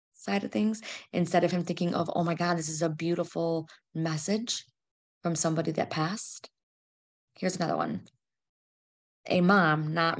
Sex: female